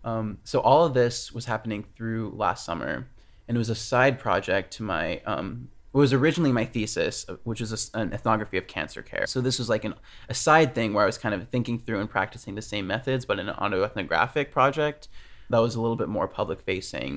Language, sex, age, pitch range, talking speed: English, male, 20-39, 105-130 Hz, 215 wpm